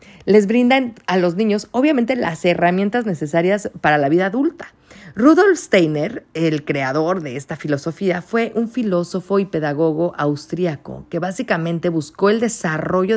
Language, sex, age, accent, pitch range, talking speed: Spanish, female, 40-59, Mexican, 160-200 Hz, 140 wpm